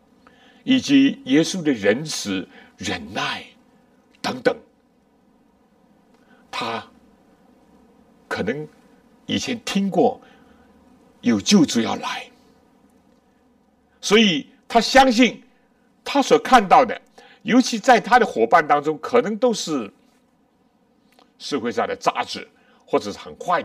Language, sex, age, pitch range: Chinese, male, 60-79, 245-250 Hz